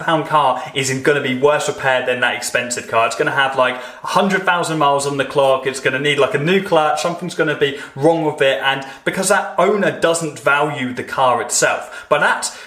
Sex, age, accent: male, 20-39, British